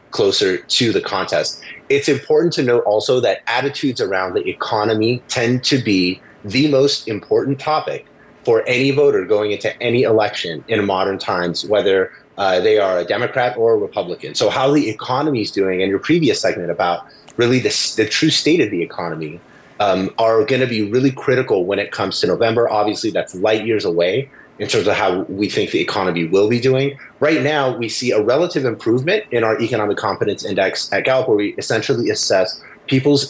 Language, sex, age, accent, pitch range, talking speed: English, male, 30-49, American, 105-160 Hz, 190 wpm